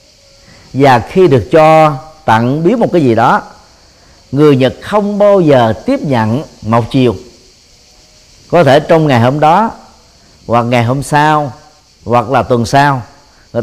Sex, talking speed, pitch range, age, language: male, 150 wpm, 115-160 Hz, 50-69, Vietnamese